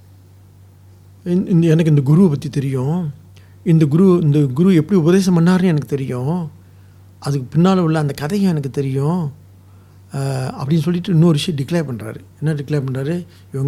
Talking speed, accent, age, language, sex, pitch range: 160 wpm, Indian, 60-79, English, male, 115-165 Hz